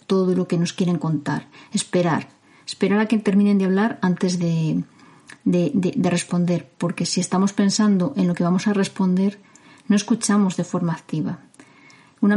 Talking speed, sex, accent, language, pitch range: 165 wpm, female, Spanish, Spanish, 175-210 Hz